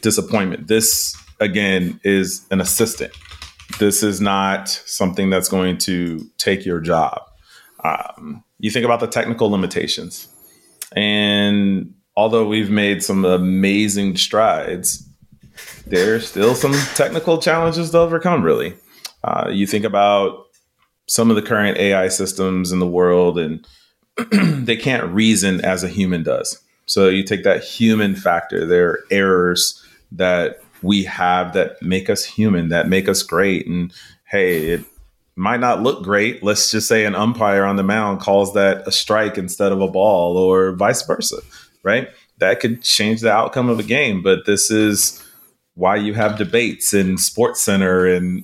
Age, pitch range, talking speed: 30-49, 95-110 Hz, 150 wpm